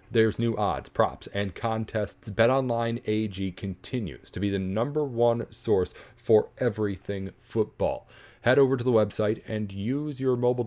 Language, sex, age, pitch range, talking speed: English, male, 30-49, 100-120 Hz, 150 wpm